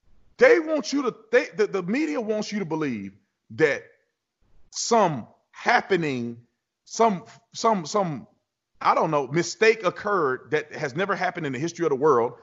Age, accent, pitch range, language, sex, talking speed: 30-49, American, 135-215 Hz, English, male, 165 wpm